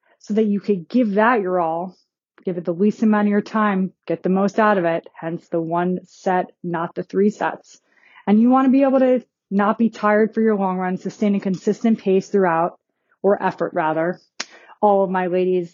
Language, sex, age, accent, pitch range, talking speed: English, female, 20-39, American, 185-220 Hz, 215 wpm